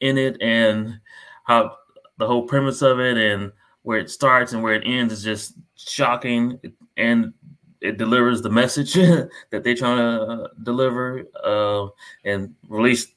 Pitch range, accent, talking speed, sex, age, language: 110-130 Hz, American, 150 wpm, male, 20-39, English